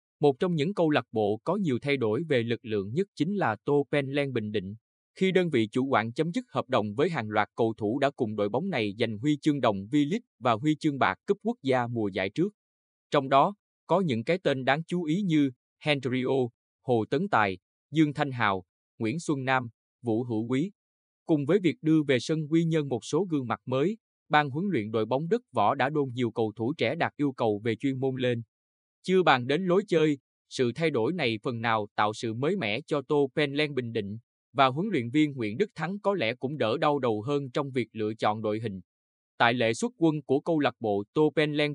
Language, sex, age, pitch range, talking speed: Vietnamese, male, 20-39, 115-155 Hz, 230 wpm